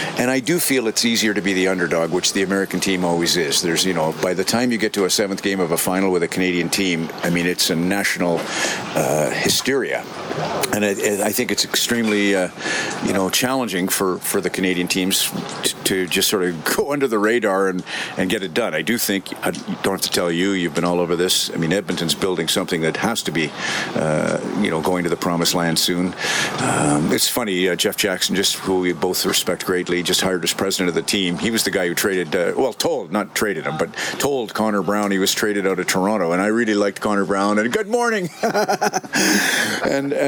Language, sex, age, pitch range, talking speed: English, male, 50-69, 90-105 Hz, 230 wpm